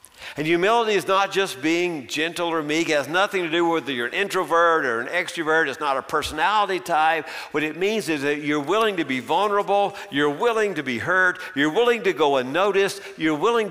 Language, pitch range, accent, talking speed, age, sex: English, 135-195 Hz, American, 215 wpm, 50-69, male